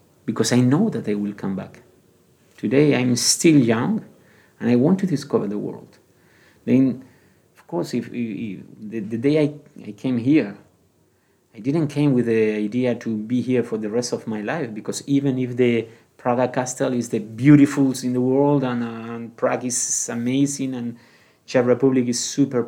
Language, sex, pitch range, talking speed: Czech, male, 115-140 Hz, 185 wpm